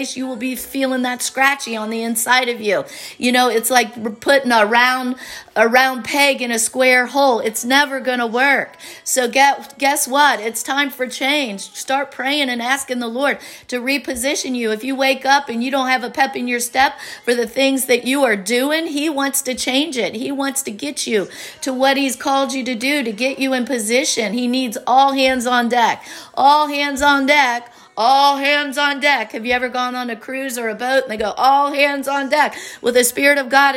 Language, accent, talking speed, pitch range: English, American, 220 wpm, 235-275 Hz